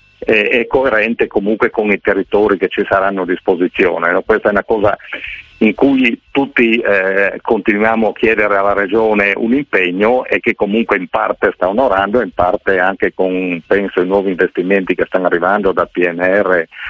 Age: 50-69